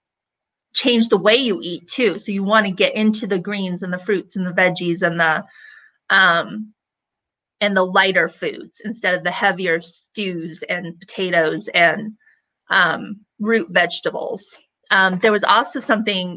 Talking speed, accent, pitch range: 155 wpm, American, 185-230 Hz